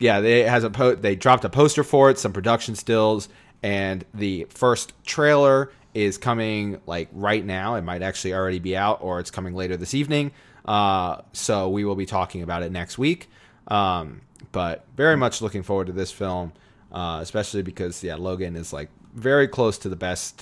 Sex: male